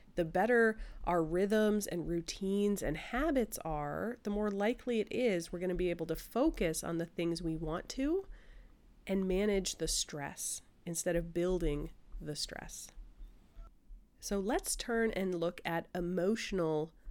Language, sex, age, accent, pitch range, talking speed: English, female, 30-49, American, 165-210 Hz, 145 wpm